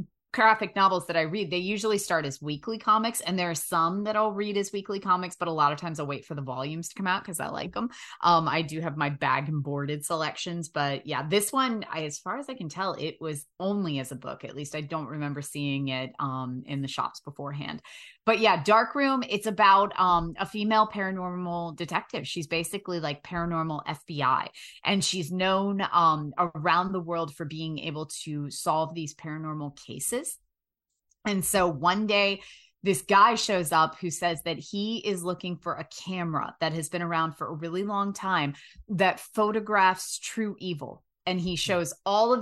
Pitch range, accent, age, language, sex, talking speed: 155-195 Hz, American, 20-39, English, female, 200 wpm